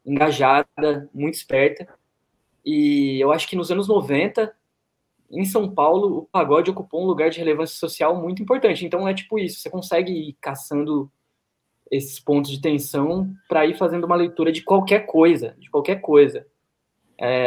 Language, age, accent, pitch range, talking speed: Portuguese, 20-39, Brazilian, 140-180 Hz, 160 wpm